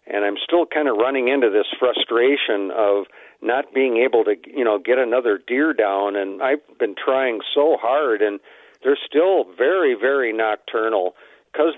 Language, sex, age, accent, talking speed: English, male, 50-69, American, 170 wpm